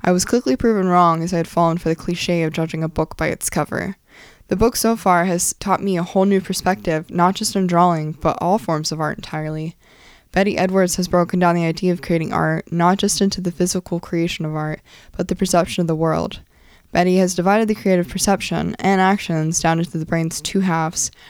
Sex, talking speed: female, 220 wpm